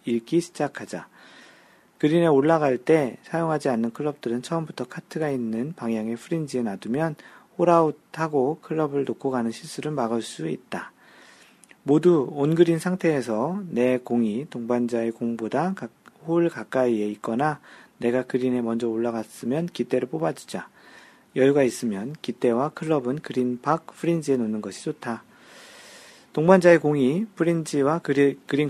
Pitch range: 115-160 Hz